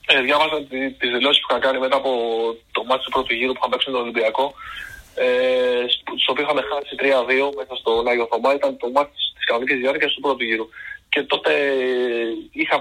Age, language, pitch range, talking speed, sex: 20-39, Greek, 120-140 Hz, 185 wpm, male